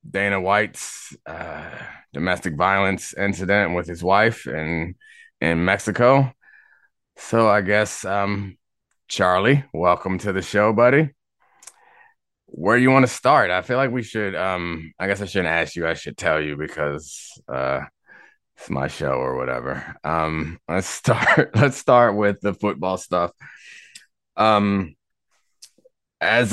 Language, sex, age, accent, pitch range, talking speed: English, male, 20-39, American, 90-105 Hz, 140 wpm